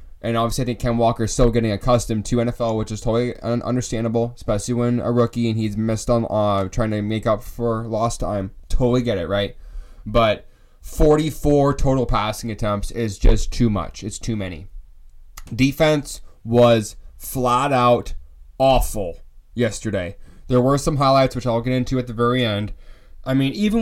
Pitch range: 105-135 Hz